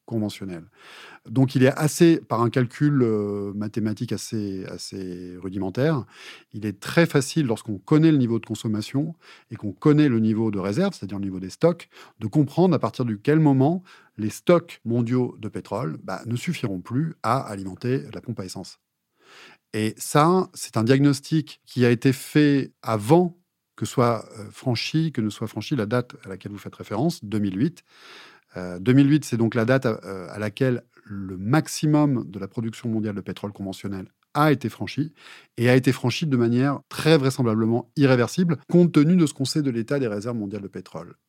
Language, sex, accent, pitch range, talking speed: French, male, French, 105-140 Hz, 180 wpm